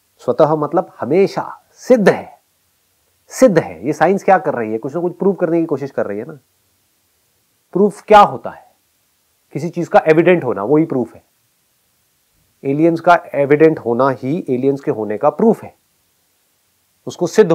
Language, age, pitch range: Hindi, 40-59, 110-170 Hz